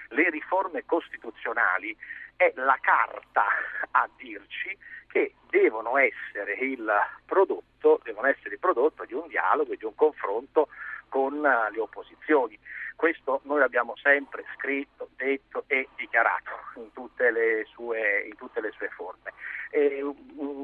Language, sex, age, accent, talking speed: Italian, male, 50-69, native, 130 wpm